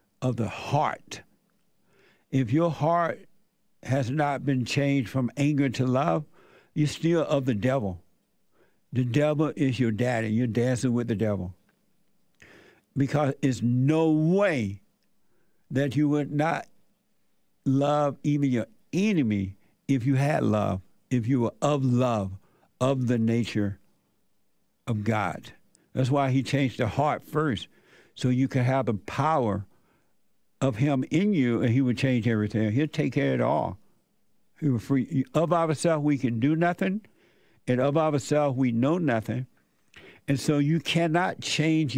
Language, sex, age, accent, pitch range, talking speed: English, male, 60-79, American, 120-150 Hz, 150 wpm